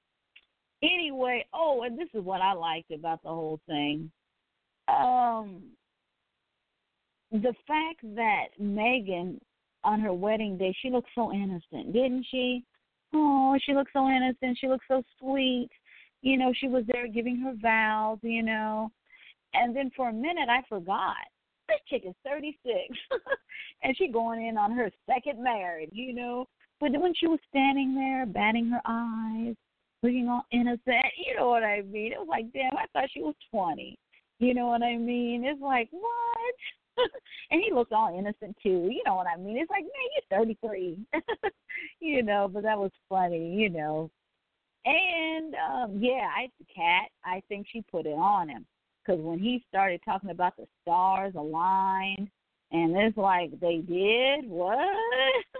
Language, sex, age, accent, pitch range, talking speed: English, female, 40-59, American, 200-275 Hz, 165 wpm